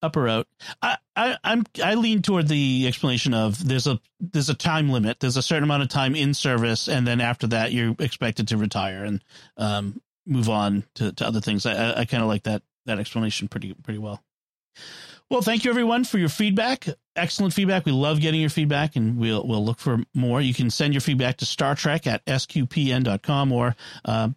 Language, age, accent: English, 40-59, American